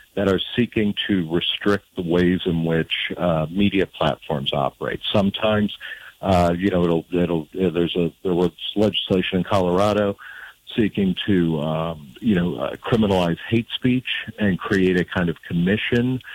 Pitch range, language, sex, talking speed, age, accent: 85-105 Hz, English, male, 150 wpm, 50-69, American